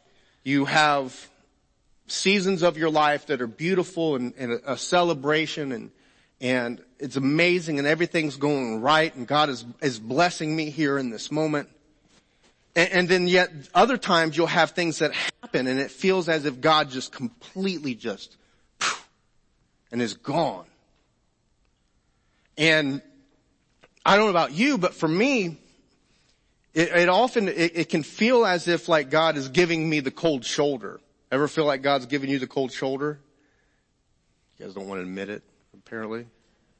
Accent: American